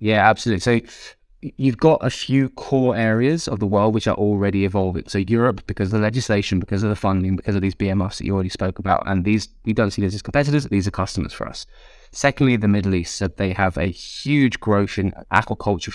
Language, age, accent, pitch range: English, 20-39, British, 95-110 Hz